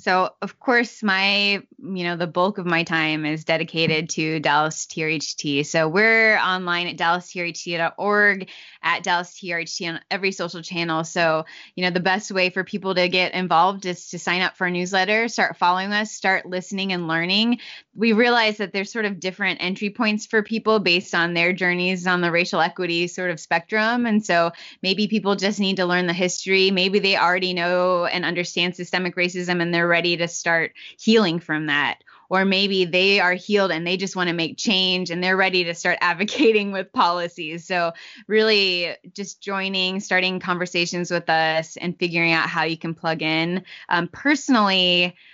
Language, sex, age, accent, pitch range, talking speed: English, female, 20-39, American, 170-190 Hz, 185 wpm